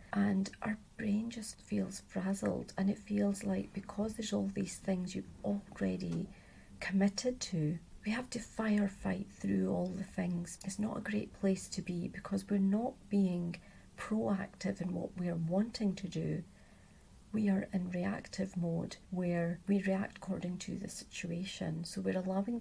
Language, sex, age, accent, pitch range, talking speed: English, female, 40-59, British, 185-210 Hz, 160 wpm